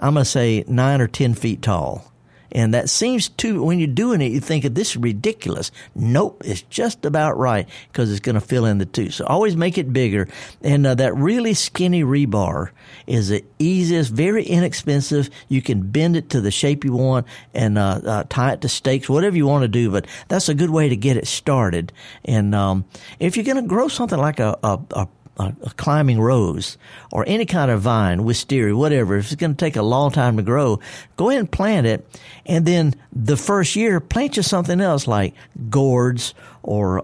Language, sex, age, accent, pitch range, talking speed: English, male, 50-69, American, 110-155 Hz, 210 wpm